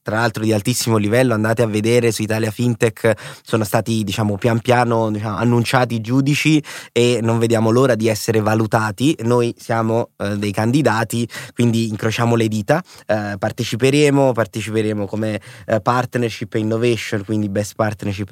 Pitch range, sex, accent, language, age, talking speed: 110-135 Hz, male, native, Italian, 20-39, 155 wpm